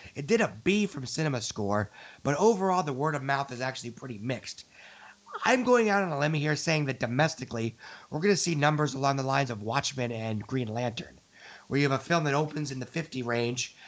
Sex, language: male, English